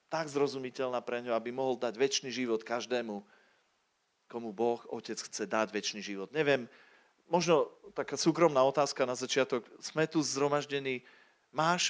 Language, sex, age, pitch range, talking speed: Slovak, male, 40-59, 125-155 Hz, 140 wpm